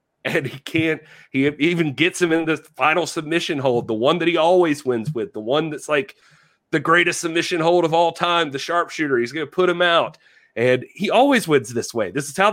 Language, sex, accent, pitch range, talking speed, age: English, male, American, 130-170 Hz, 225 wpm, 30-49